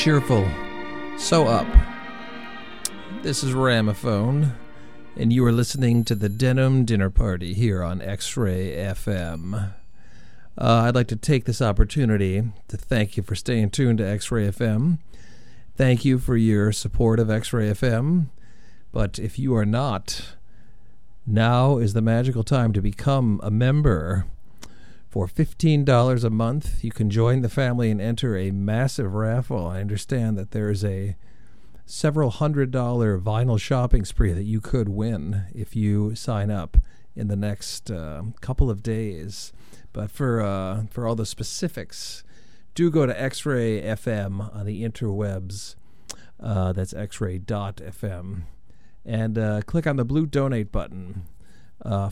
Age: 50-69